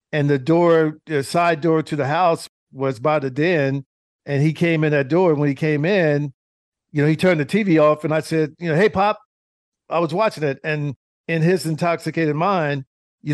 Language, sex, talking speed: English, male, 215 wpm